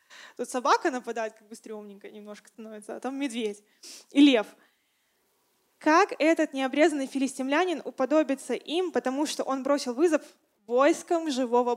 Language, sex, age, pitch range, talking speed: Russian, female, 20-39, 235-315 Hz, 135 wpm